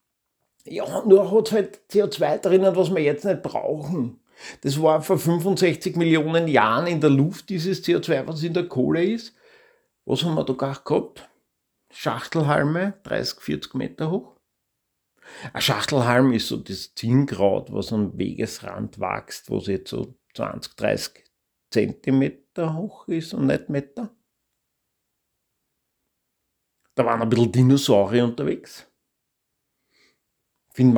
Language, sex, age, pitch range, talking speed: German, male, 50-69, 115-175 Hz, 130 wpm